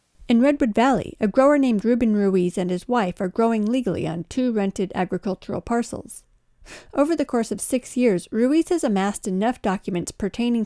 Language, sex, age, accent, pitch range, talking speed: English, female, 40-59, American, 190-245 Hz, 175 wpm